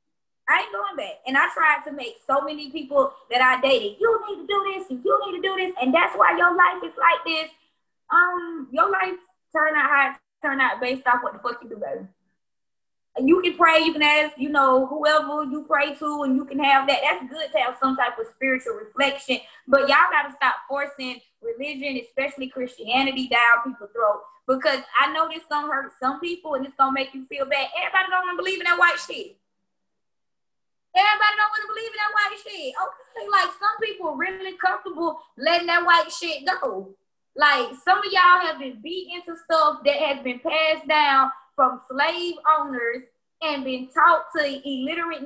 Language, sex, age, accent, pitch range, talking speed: English, female, 20-39, American, 265-330 Hz, 205 wpm